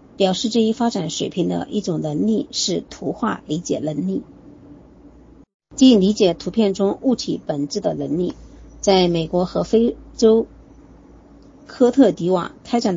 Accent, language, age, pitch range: American, Chinese, 50-69, 185-230 Hz